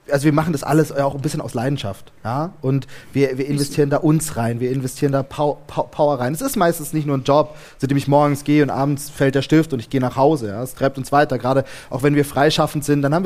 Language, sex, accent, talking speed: German, male, German, 265 wpm